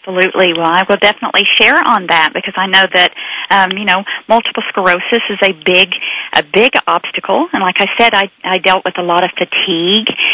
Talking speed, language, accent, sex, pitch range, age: 205 wpm, English, American, female, 195-235 Hz, 40-59